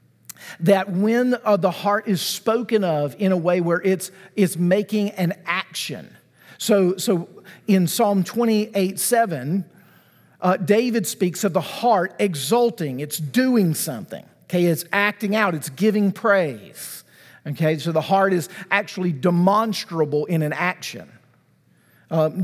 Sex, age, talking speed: male, 50-69, 135 wpm